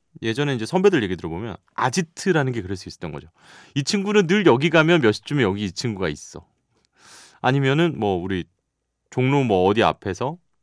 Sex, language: male, Korean